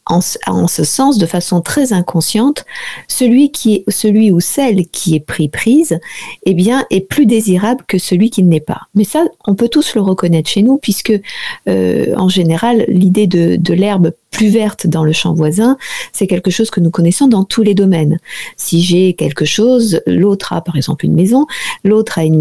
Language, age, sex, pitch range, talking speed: French, 50-69, female, 170-225 Hz, 195 wpm